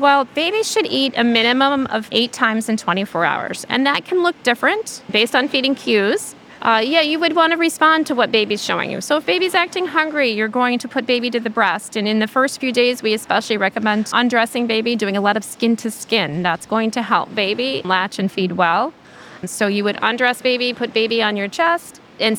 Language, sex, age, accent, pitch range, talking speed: English, female, 30-49, American, 190-250 Hz, 225 wpm